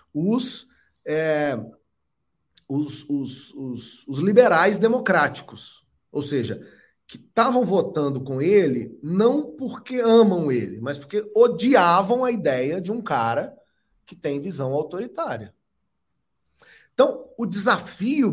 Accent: Brazilian